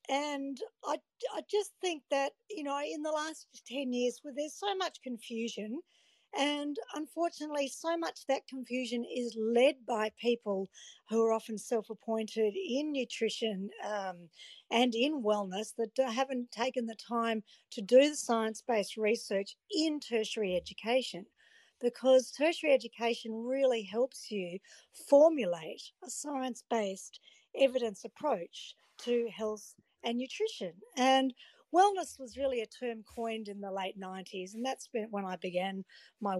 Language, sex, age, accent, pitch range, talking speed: English, female, 50-69, Australian, 205-265 Hz, 145 wpm